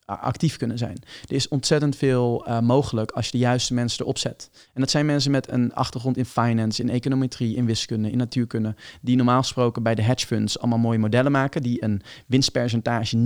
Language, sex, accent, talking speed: Dutch, male, Dutch, 205 wpm